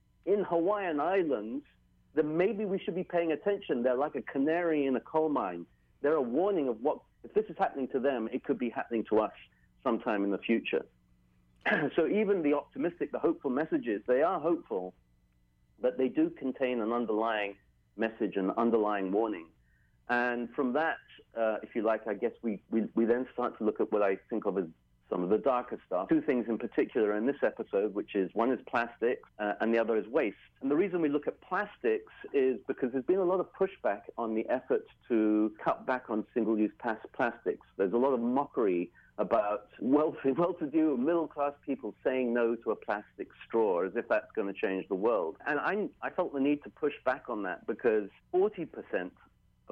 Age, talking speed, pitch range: 40-59, 200 wpm, 105-170 Hz